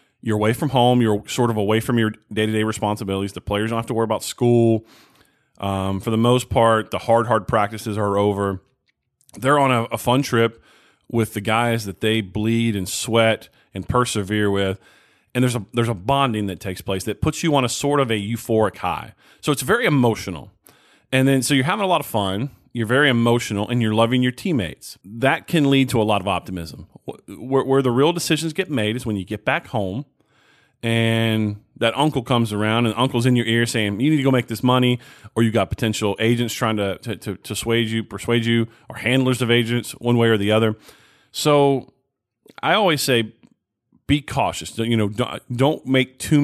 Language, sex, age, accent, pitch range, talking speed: English, male, 30-49, American, 105-125 Hz, 205 wpm